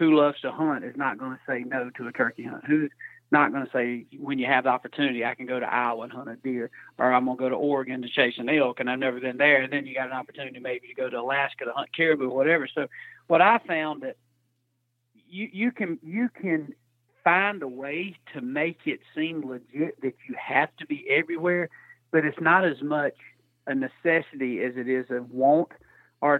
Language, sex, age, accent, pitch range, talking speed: English, male, 40-59, American, 130-165 Hz, 230 wpm